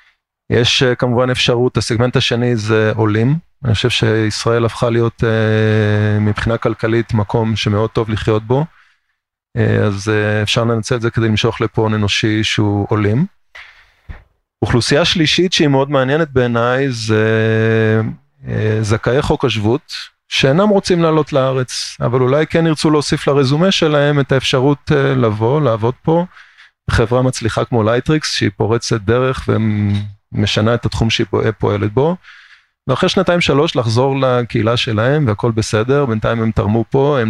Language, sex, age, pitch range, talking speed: Hebrew, male, 30-49, 110-140 Hz, 135 wpm